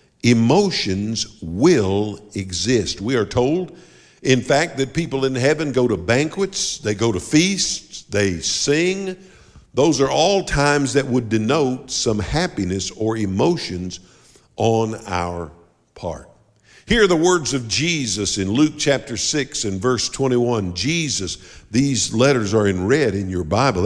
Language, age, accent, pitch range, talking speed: English, 50-69, American, 105-145 Hz, 145 wpm